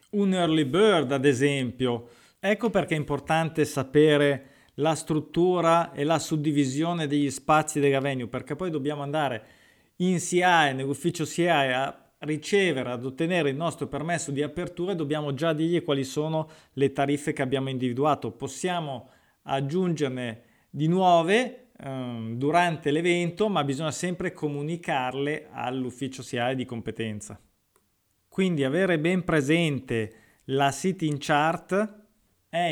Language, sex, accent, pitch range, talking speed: Italian, male, native, 130-165 Hz, 130 wpm